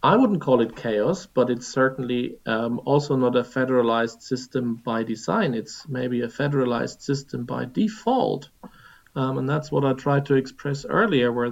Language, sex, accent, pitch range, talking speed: English, male, German, 125-155 Hz, 170 wpm